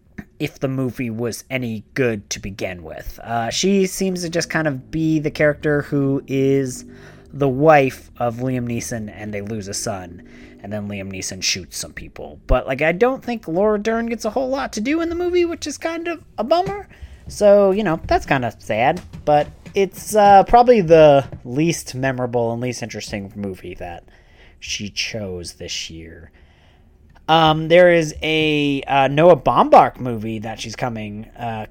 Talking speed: 180 wpm